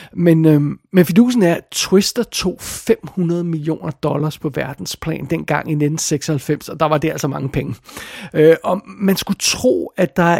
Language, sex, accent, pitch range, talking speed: Danish, male, native, 155-195 Hz, 175 wpm